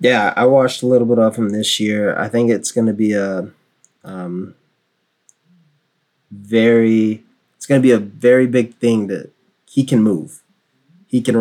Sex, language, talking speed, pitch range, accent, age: male, English, 175 wpm, 95-110 Hz, American, 20-39